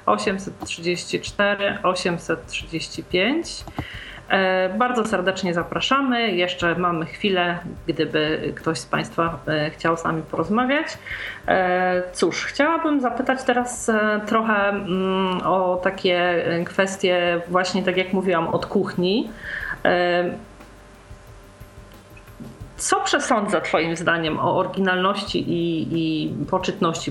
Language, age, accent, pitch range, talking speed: Polish, 40-59, native, 180-220 Hz, 85 wpm